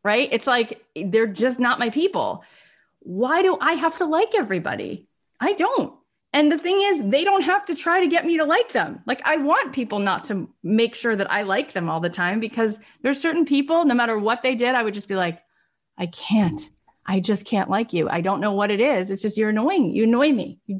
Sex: female